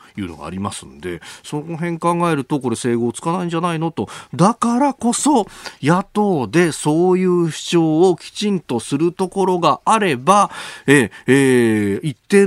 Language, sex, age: Japanese, male, 40-59